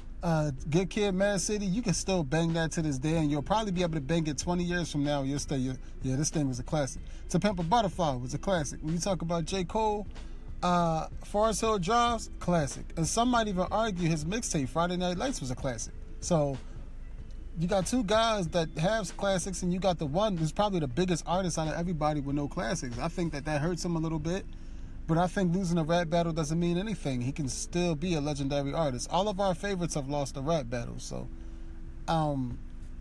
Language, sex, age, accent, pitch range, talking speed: English, male, 30-49, American, 140-190 Hz, 225 wpm